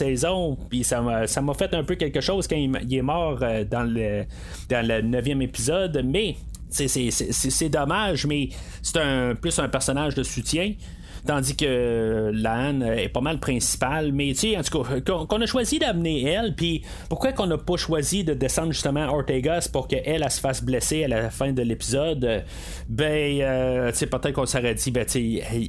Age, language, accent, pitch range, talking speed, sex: 30-49, French, Canadian, 120-160 Hz, 210 wpm, male